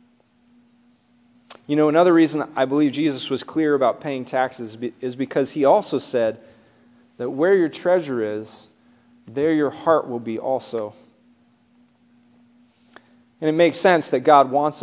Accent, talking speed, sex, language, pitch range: American, 140 wpm, male, English, 120-180 Hz